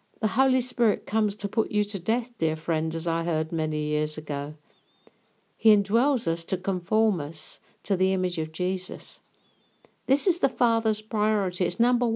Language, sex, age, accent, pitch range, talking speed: English, female, 60-79, British, 165-225 Hz, 175 wpm